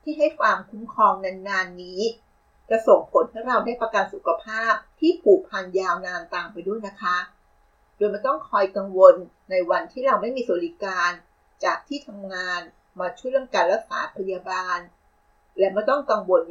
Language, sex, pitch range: Thai, female, 190-285 Hz